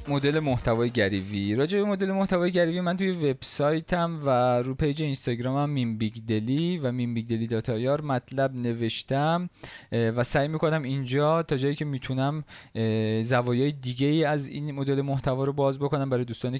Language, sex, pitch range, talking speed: Persian, male, 115-145 Hz, 150 wpm